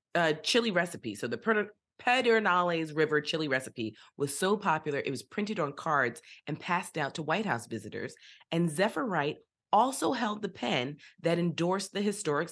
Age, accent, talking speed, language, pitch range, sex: 30-49, American, 175 wpm, English, 130-190 Hz, female